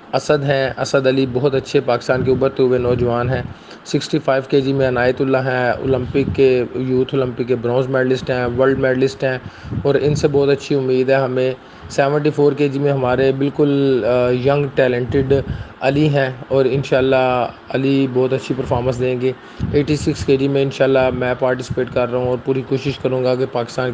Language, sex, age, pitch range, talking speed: Urdu, male, 30-49, 125-140 Hz, 190 wpm